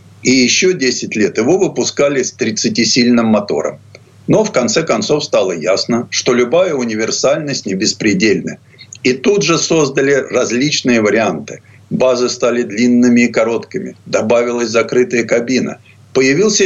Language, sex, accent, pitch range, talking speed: Russian, male, native, 120-160 Hz, 125 wpm